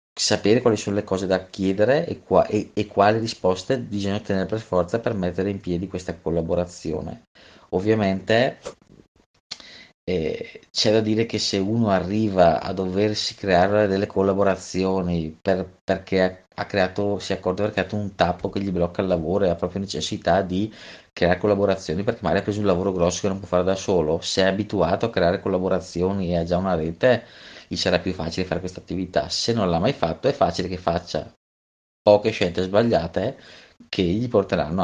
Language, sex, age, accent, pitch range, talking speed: Italian, male, 30-49, native, 90-100 Hz, 185 wpm